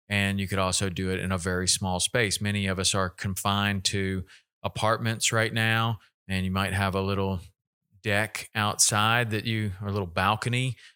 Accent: American